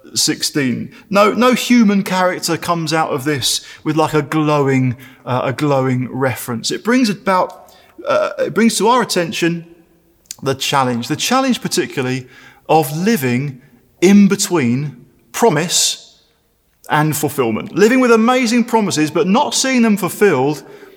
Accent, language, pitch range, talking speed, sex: British, English, 140-205 Hz, 135 wpm, male